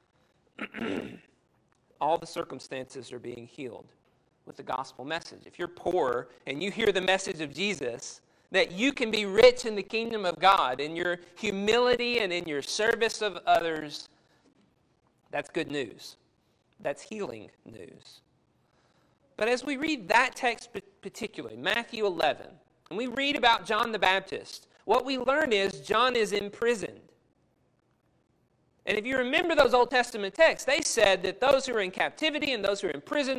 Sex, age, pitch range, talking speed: male, 40-59, 190-245 Hz, 165 wpm